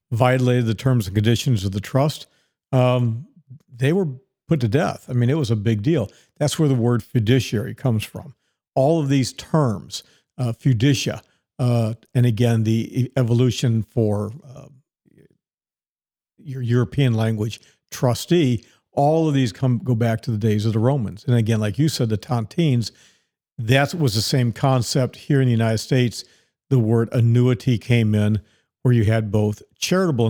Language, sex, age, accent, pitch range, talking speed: English, male, 50-69, American, 110-135 Hz, 165 wpm